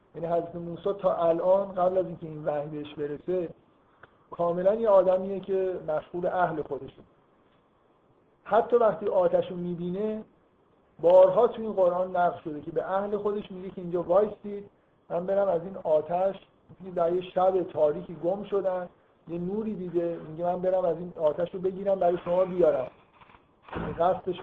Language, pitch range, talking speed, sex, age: Persian, 160-195 Hz, 155 wpm, male, 50-69